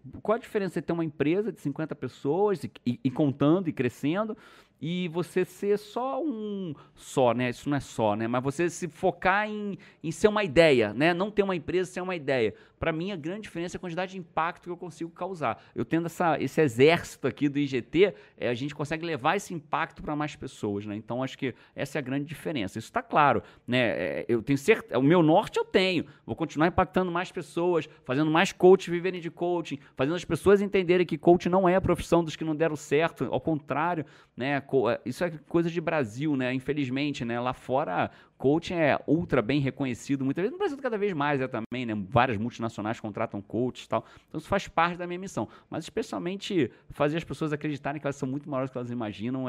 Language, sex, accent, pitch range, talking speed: Portuguese, male, Brazilian, 135-180 Hz, 210 wpm